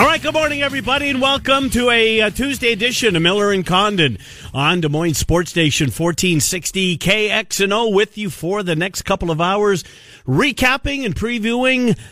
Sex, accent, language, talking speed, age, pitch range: male, American, English, 170 wpm, 50-69, 130-200 Hz